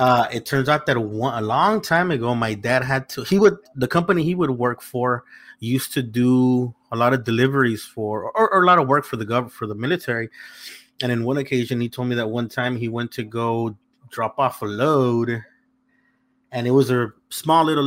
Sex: male